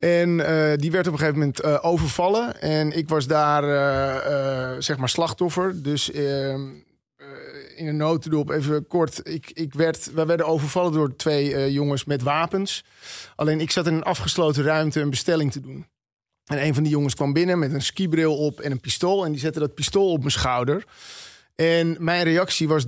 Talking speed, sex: 200 wpm, male